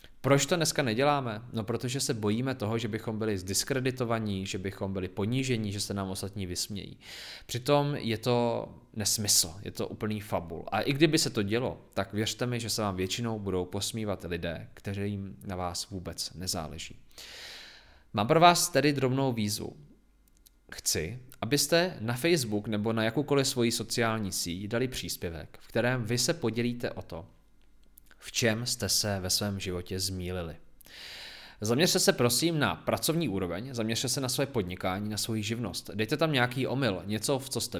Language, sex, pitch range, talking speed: Czech, male, 100-130 Hz, 170 wpm